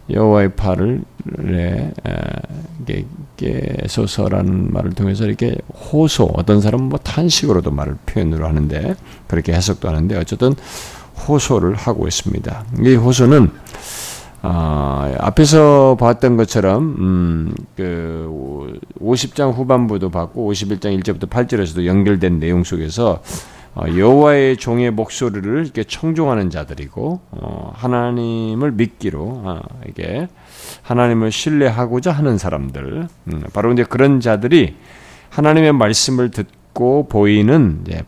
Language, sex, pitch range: Korean, male, 90-135 Hz